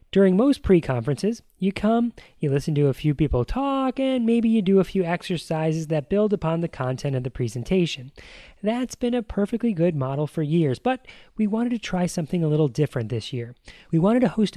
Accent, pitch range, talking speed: American, 145-205 Hz, 205 wpm